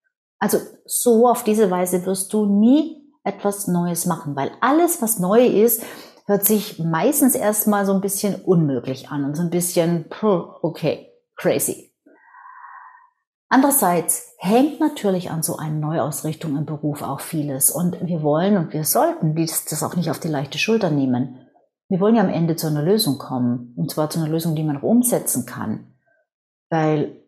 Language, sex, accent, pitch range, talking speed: German, female, German, 155-225 Hz, 165 wpm